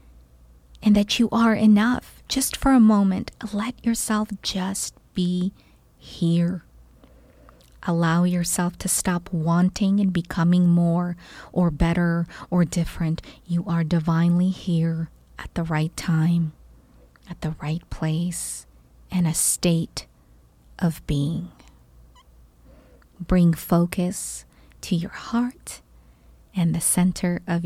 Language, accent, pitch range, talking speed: English, American, 165-205 Hz, 115 wpm